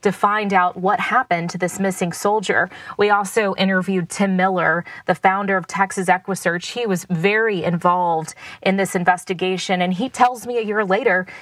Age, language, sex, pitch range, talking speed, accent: 20-39, English, female, 185-215 Hz, 175 wpm, American